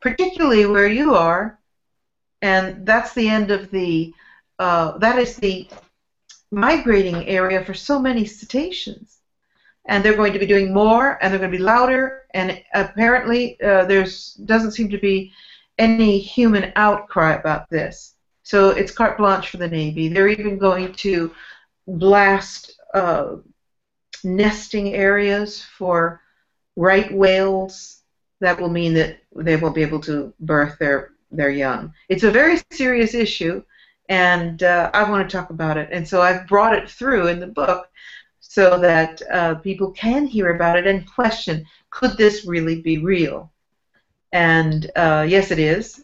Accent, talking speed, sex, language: American, 155 wpm, female, English